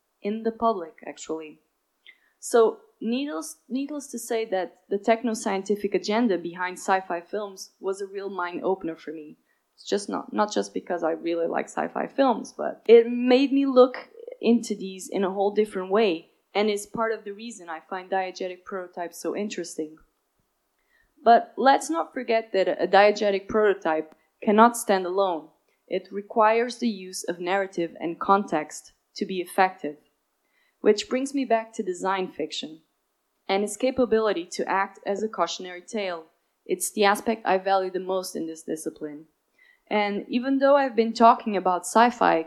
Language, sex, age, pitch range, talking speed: English, female, 20-39, 180-235 Hz, 160 wpm